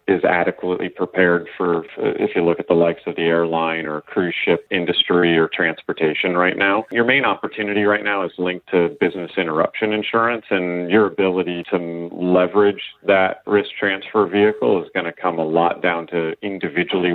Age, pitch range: 40-59, 85-100 Hz